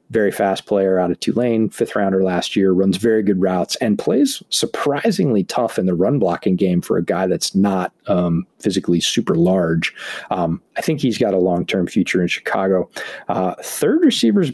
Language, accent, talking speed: English, American, 180 wpm